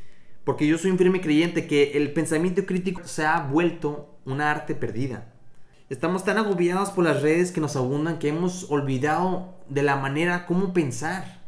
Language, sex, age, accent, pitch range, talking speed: Spanish, male, 20-39, Mexican, 125-165 Hz, 175 wpm